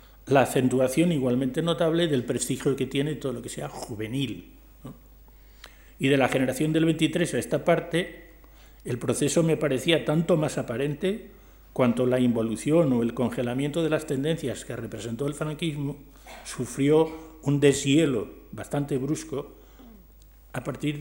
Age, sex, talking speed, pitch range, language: 50-69, male, 140 wpm, 120-145 Hz, Spanish